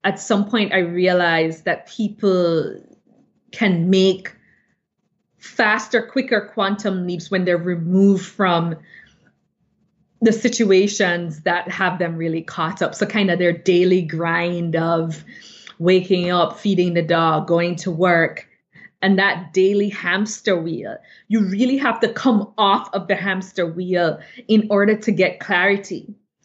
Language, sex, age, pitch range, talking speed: English, female, 20-39, 180-210 Hz, 135 wpm